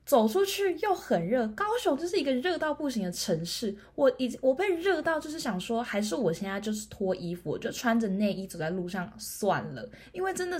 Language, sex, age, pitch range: Chinese, female, 20-39, 180-250 Hz